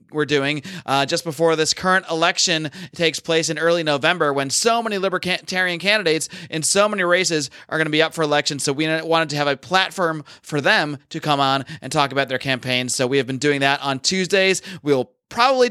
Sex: male